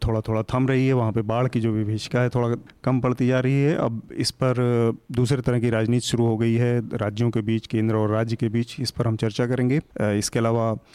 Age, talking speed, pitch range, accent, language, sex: 30-49, 245 wpm, 110-125 Hz, native, Hindi, male